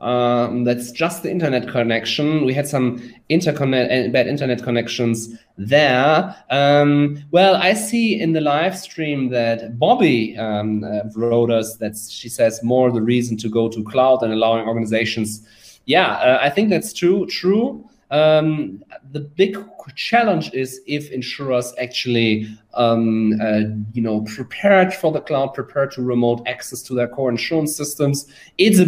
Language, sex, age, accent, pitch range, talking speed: English, male, 30-49, German, 115-150 Hz, 155 wpm